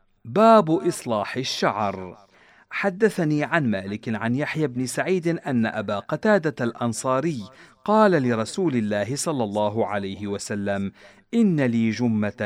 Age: 50-69